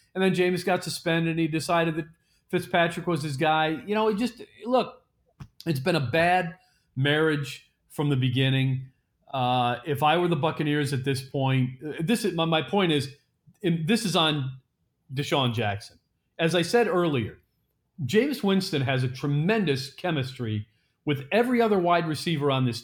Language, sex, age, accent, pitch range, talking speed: English, male, 40-59, American, 125-165 Hz, 165 wpm